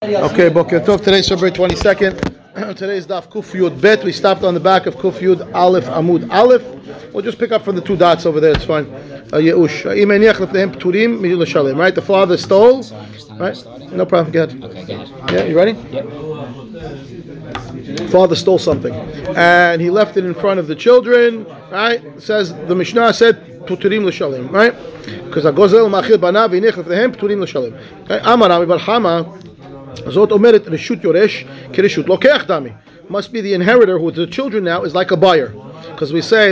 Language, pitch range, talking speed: English, 160-205 Hz, 155 wpm